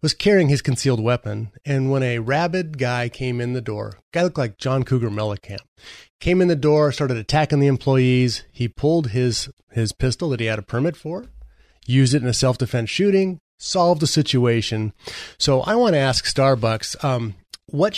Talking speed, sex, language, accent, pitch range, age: 185 wpm, male, English, American, 115-150 Hz, 30-49